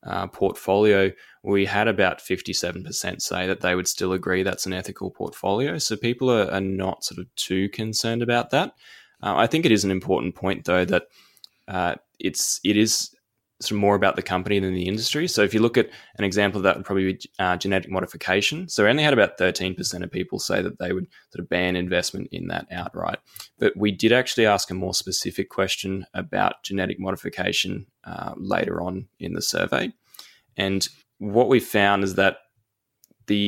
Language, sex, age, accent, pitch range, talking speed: English, male, 20-39, Australian, 95-110 Hz, 195 wpm